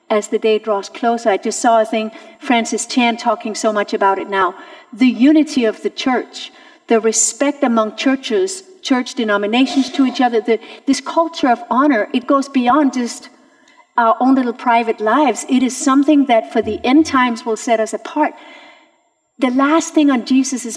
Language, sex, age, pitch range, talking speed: English, female, 50-69, 230-305 Hz, 180 wpm